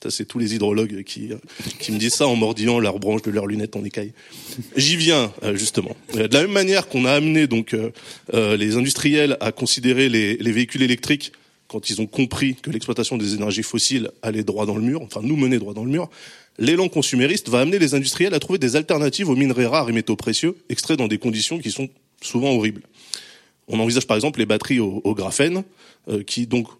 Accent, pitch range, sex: French, 110-135 Hz, male